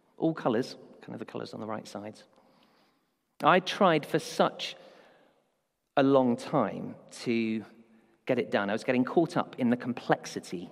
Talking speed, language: 160 wpm, English